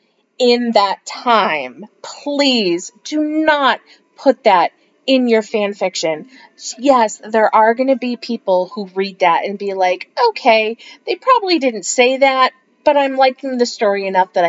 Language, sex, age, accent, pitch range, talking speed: English, female, 30-49, American, 190-260 Hz, 155 wpm